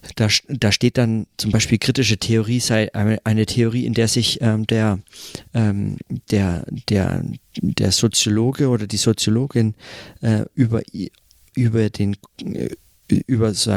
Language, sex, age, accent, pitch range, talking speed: German, male, 40-59, German, 105-120 Hz, 130 wpm